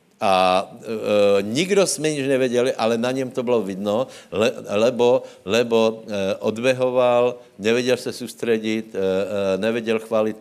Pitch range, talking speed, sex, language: 95-120 Hz, 140 wpm, male, Slovak